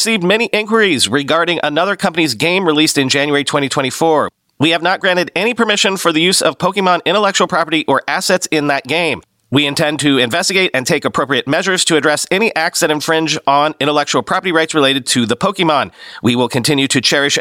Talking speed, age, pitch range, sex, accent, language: 195 wpm, 40-59, 135-190 Hz, male, American, English